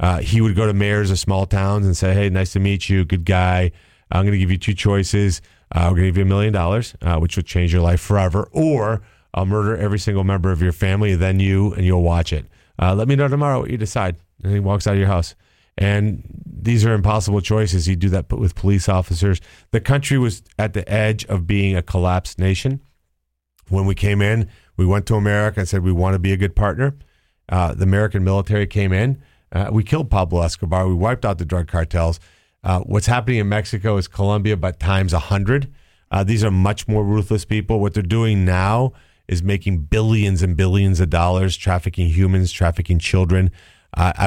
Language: English